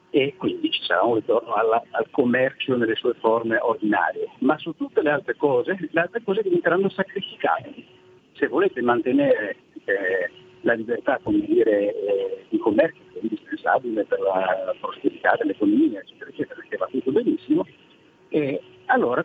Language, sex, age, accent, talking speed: Italian, male, 50-69, native, 155 wpm